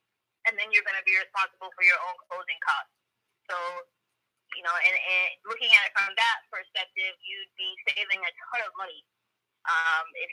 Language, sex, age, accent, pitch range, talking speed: English, female, 20-39, American, 185-265 Hz, 185 wpm